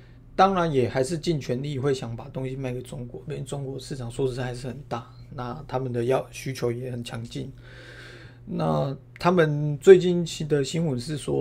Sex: male